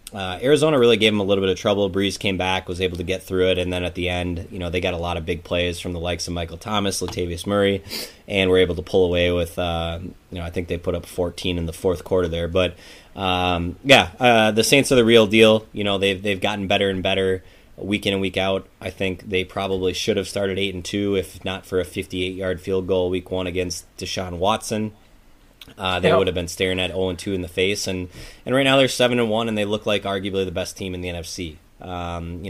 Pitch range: 90-100 Hz